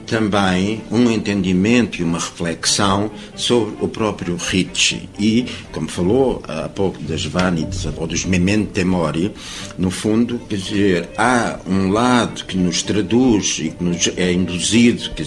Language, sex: Portuguese, male